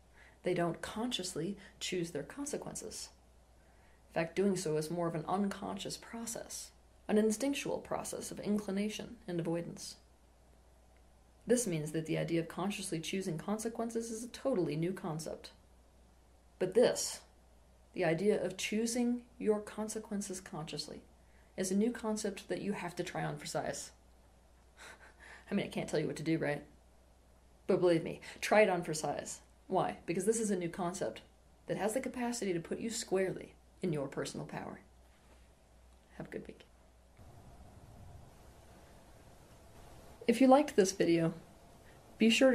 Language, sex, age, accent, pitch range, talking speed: English, female, 30-49, American, 145-210 Hz, 150 wpm